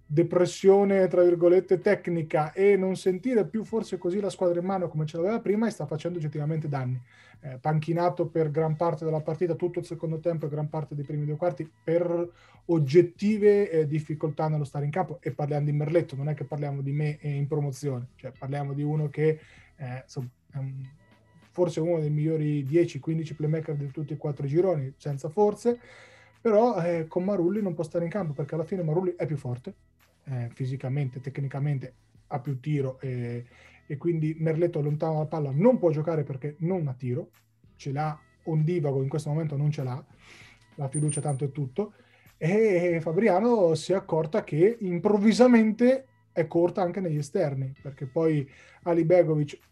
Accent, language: native, Italian